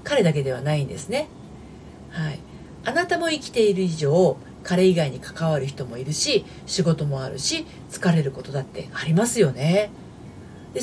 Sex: female